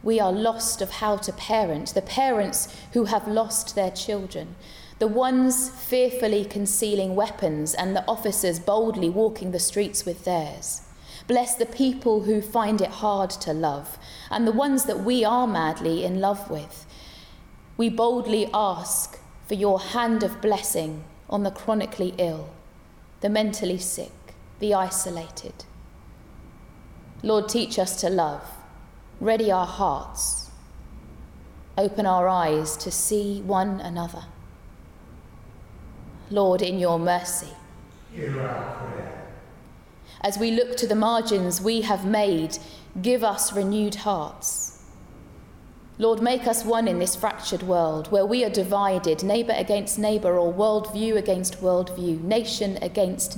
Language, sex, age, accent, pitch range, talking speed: English, female, 20-39, British, 180-220 Hz, 130 wpm